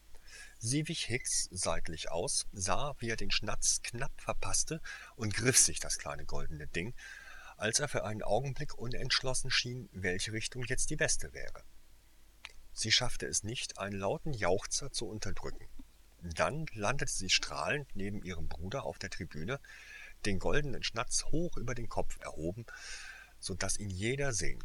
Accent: German